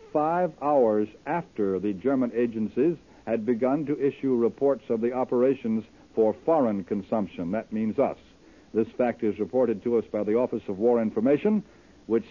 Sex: male